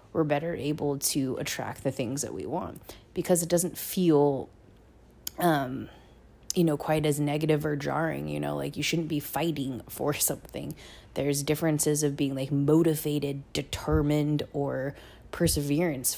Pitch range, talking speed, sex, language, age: 140-155 Hz, 150 wpm, female, English, 20-39